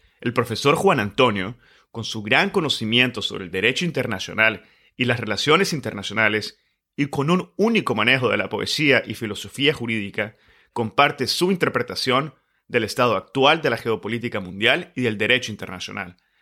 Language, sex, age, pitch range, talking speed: Spanish, male, 30-49, 110-145 Hz, 150 wpm